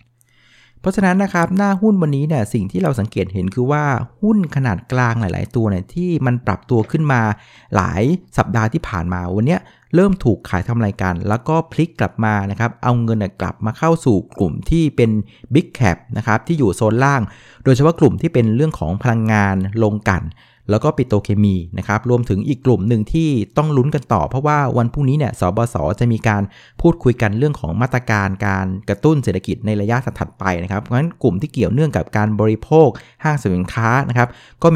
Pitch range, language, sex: 105-140 Hz, Thai, male